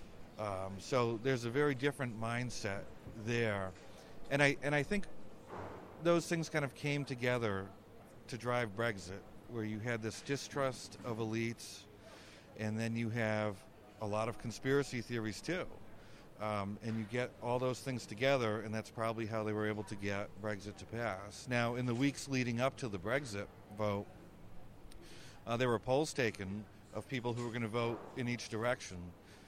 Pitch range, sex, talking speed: 105-120 Hz, male, 170 wpm